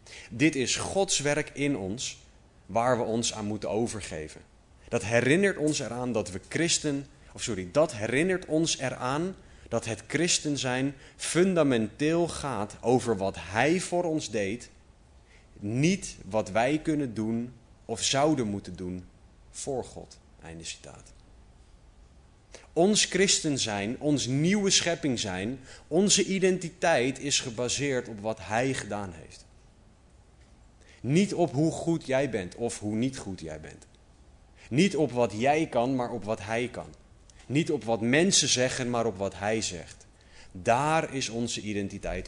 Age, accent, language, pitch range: 30-49, Dutch, Dutch, 95-140 Hz